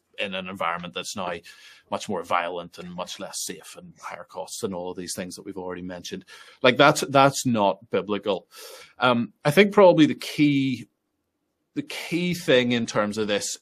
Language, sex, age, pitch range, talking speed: English, male, 30-49, 100-130 Hz, 185 wpm